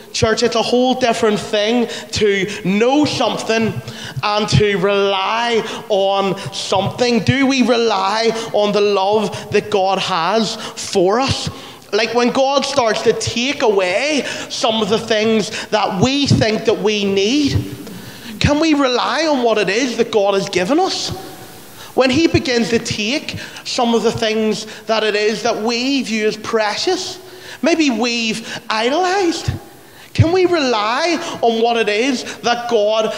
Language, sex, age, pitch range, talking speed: English, male, 30-49, 210-255 Hz, 150 wpm